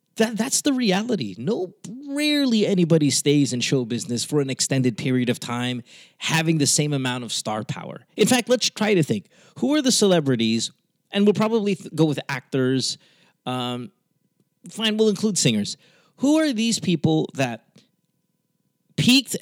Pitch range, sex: 135-200 Hz, male